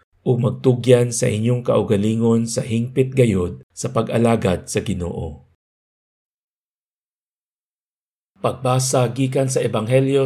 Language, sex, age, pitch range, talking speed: Filipino, male, 50-69, 100-130 Hz, 90 wpm